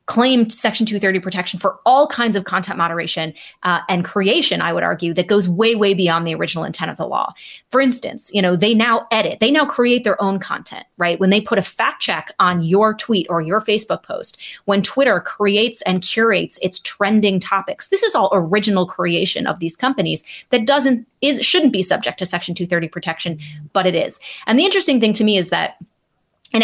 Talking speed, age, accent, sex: 205 wpm, 20-39, American, female